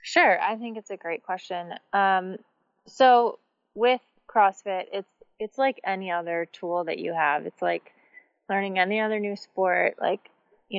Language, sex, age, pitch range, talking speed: English, female, 20-39, 175-210 Hz, 160 wpm